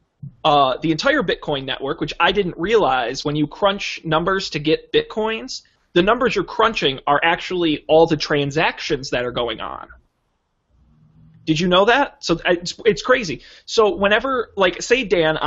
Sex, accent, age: male, American, 20-39